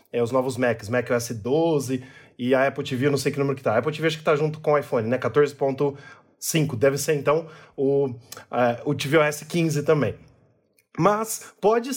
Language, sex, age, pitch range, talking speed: Portuguese, male, 20-39, 140-170 Hz, 205 wpm